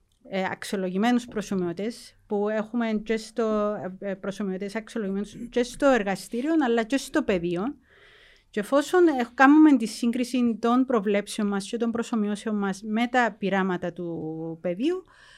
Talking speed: 120 wpm